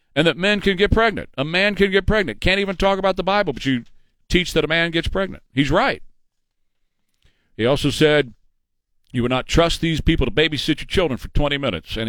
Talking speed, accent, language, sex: 220 wpm, American, English, male